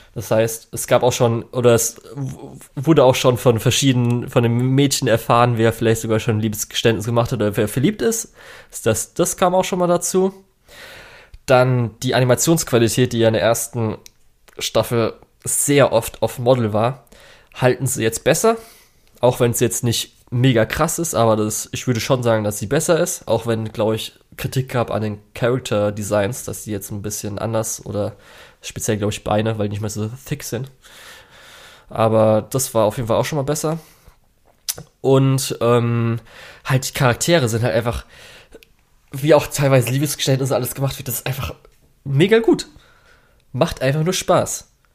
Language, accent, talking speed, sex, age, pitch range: German, German, 180 wpm, male, 20-39, 110-140 Hz